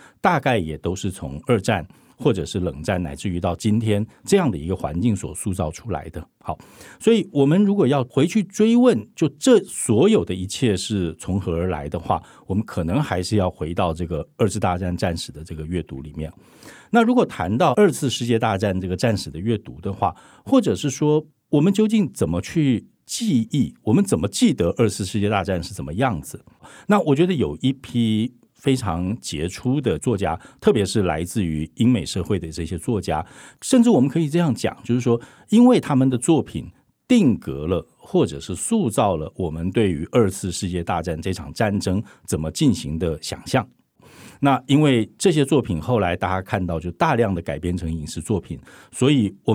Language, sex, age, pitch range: Chinese, male, 50-69, 90-135 Hz